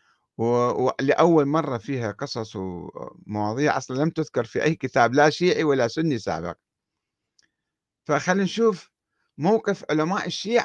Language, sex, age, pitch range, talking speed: Arabic, male, 50-69, 120-165 Hz, 120 wpm